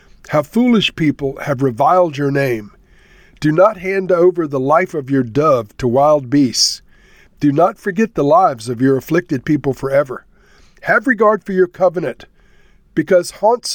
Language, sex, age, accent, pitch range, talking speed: English, male, 50-69, American, 130-175 Hz, 155 wpm